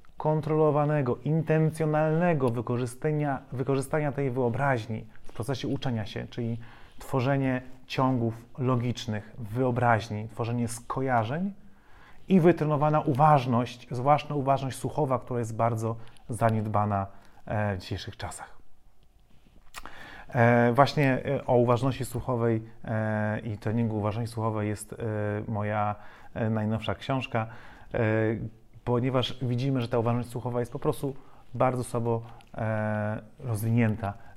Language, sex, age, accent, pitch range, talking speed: Polish, male, 30-49, native, 115-140 Hz, 95 wpm